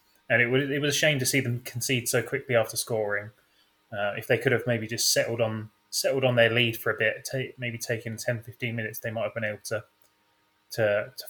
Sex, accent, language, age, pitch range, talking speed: male, British, English, 20-39, 105-120 Hz, 240 wpm